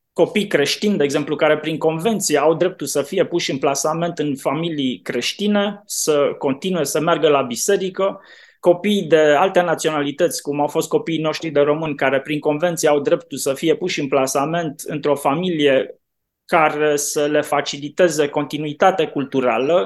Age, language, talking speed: 20-39, Romanian, 155 wpm